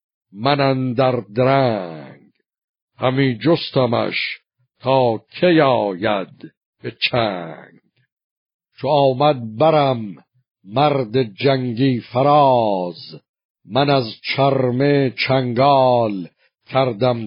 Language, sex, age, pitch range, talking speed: Persian, male, 60-79, 120-140 Hz, 75 wpm